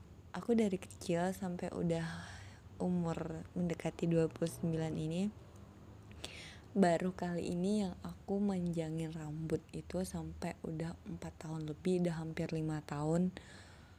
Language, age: Indonesian, 20-39